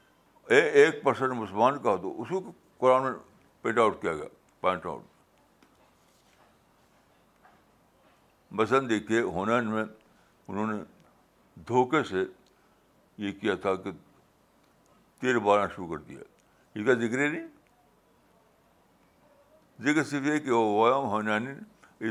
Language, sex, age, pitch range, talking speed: Urdu, male, 60-79, 105-130 Hz, 110 wpm